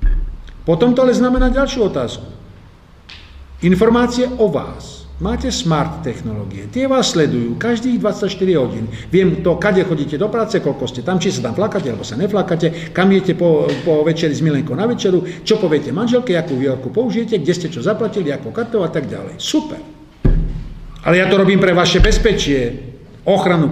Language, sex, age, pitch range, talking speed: Czech, male, 50-69, 130-195 Hz, 170 wpm